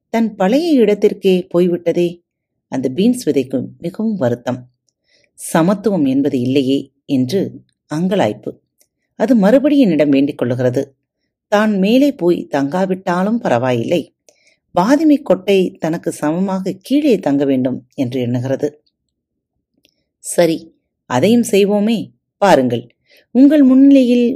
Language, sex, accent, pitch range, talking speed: Tamil, female, native, 135-220 Hz, 95 wpm